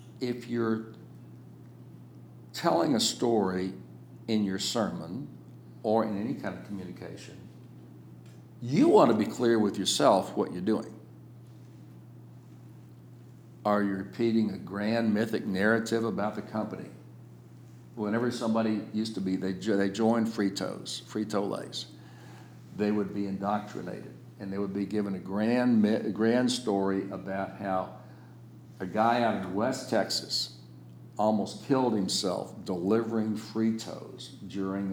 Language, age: English, 60-79